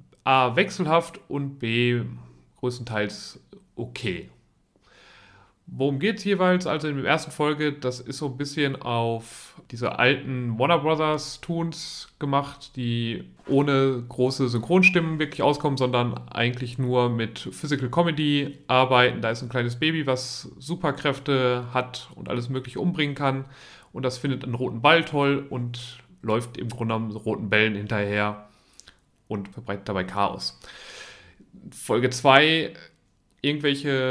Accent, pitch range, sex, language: German, 115-145 Hz, male, German